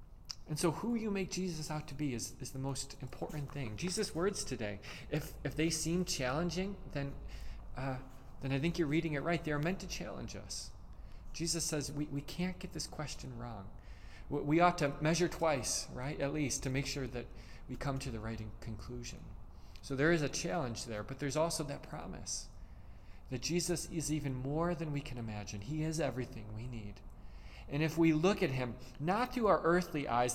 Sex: male